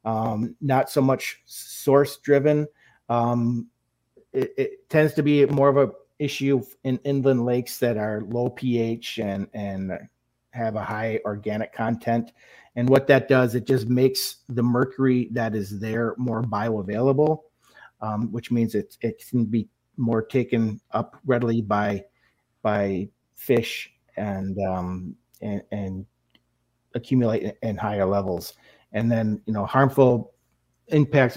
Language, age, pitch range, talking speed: English, 40-59, 110-135 Hz, 140 wpm